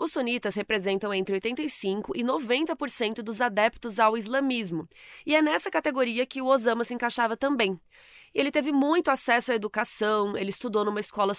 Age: 20-39